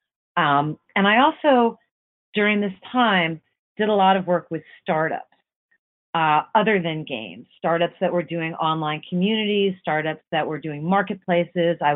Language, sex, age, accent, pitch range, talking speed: English, female, 40-59, American, 160-200 Hz, 150 wpm